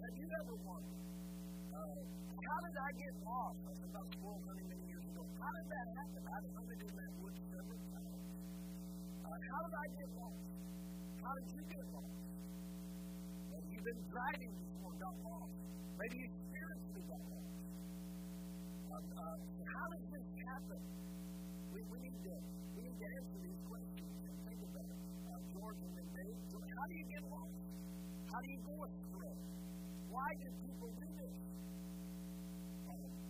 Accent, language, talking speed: American, English, 150 wpm